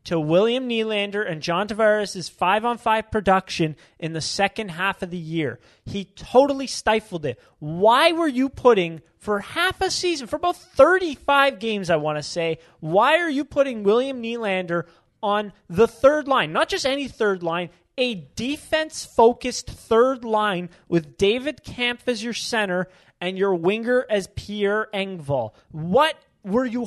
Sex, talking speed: male, 155 wpm